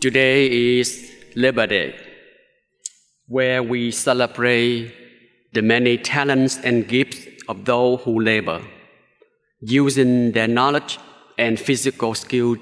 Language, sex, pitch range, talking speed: English, male, 120-140 Hz, 105 wpm